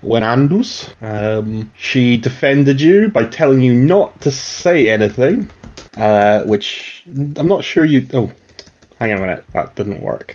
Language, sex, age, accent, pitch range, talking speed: English, male, 30-49, British, 115-150 Hz, 150 wpm